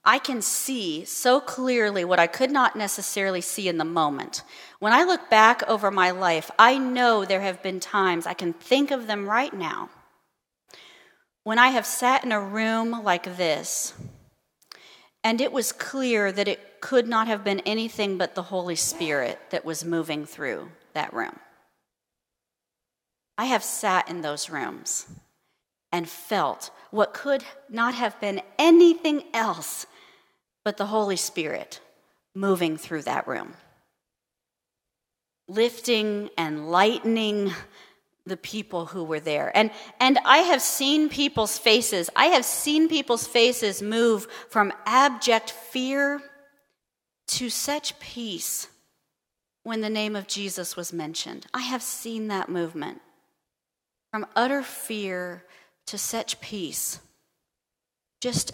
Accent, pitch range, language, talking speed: American, 185-245 Hz, English, 135 wpm